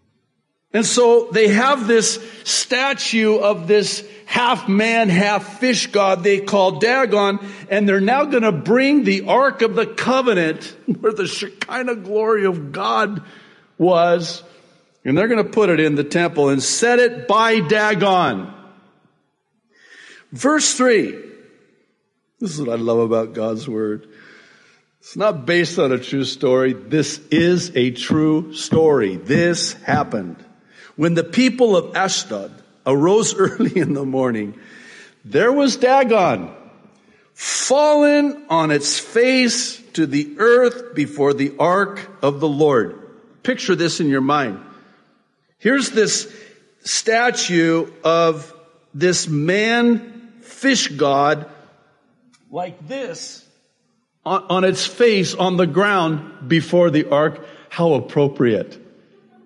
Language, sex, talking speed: English, male, 120 wpm